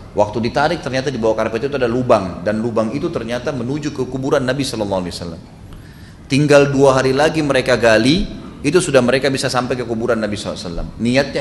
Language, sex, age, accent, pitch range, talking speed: Indonesian, male, 30-49, native, 115-180 Hz, 180 wpm